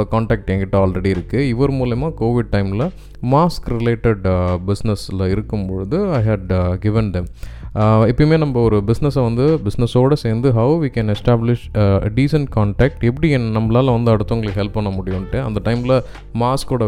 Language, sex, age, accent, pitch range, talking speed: Tamil, male, 20-39, native, 100-125 Hz, 115 wpm